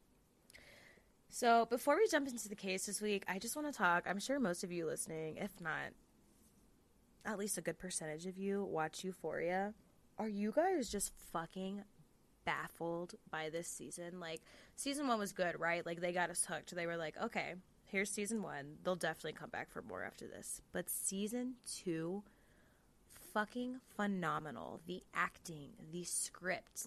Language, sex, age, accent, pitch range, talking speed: English, female, 20-39, American, 170-205 Hz, 170 wpm